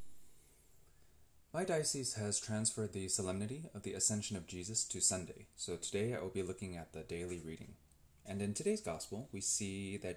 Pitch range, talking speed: 90-115 Hz, 175 wpm